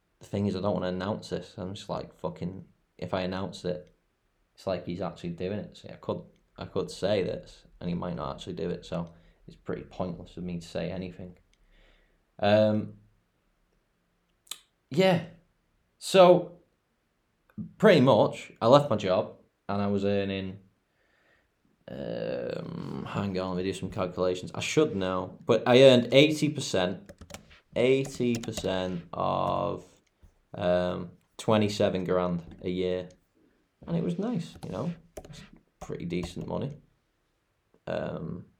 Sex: male